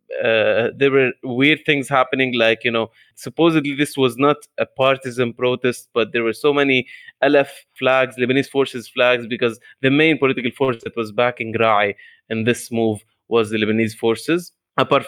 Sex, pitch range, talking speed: male, 115-135 Hz, 170 wpm